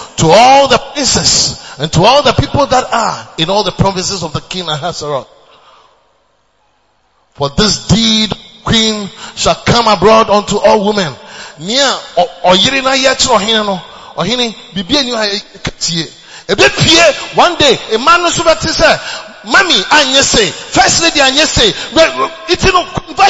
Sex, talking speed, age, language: male, 140 wpm, 30-49, English